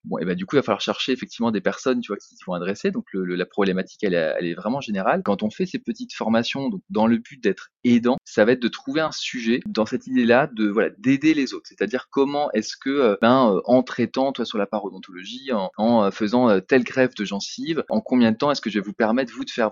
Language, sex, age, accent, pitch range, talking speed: French, male, 20-39, French, 105-155 Hz, 270 wpm